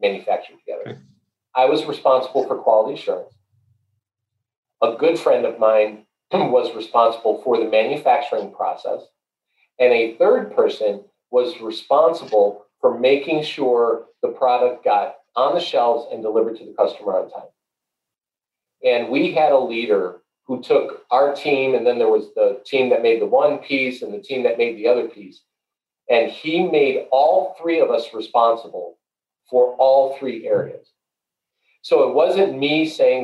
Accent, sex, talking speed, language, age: American, male, 155 wpm, English, 40-59